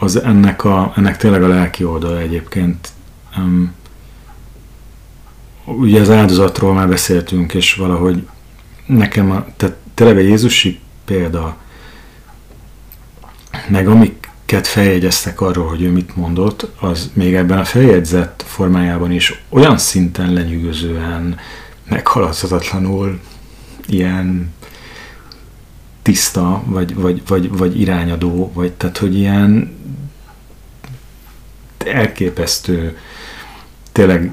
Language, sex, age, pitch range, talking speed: Hungarian, male, 40-59, 85-95 Hz, 95 wpm